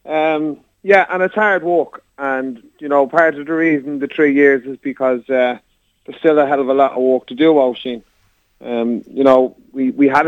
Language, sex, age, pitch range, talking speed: English, male, 30-49, 125-145 Hz, 220 wpm